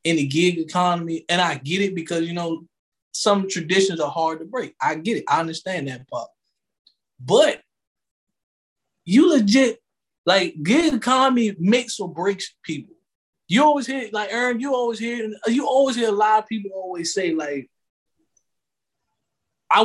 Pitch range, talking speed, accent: 175-235 Hz, 160 wpm, American